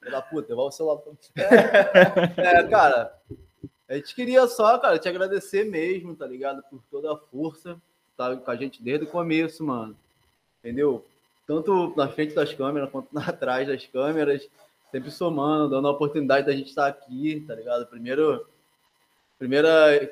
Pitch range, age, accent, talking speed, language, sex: 135-175 Hz, 20-39, Brazilian, 155 wpm, Portuguese, male